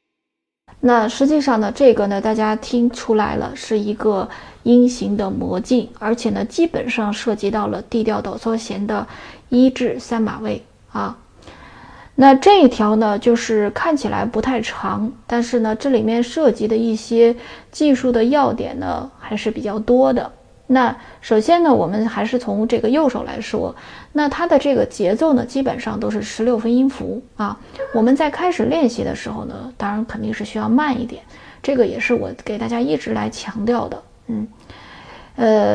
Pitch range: 215-260 Hz